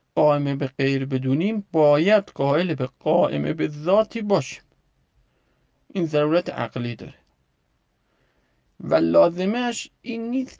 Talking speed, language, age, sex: 110 wpm, Persian, 50-69, male